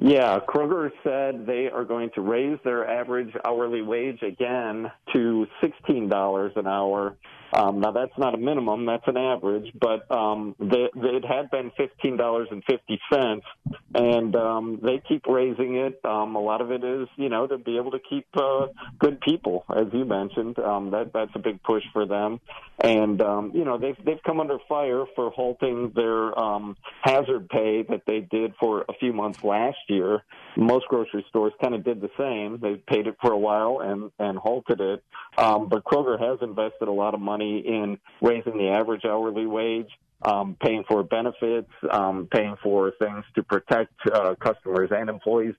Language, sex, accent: English, male, American